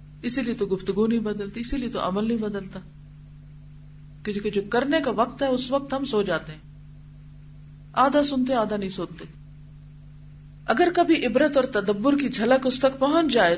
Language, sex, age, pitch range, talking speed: Urdu, female, 50-69, 150-250 Hz, 170 wpm